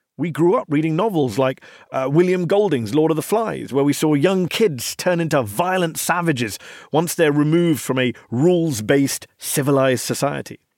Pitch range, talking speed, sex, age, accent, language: 140-200 Hz, 165 wpm, male, 40-59, British, English